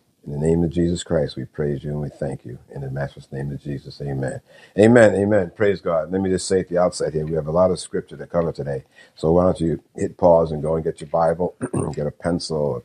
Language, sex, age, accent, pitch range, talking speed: English, male, 50-69, American, 75-90 Hz, 265 wpm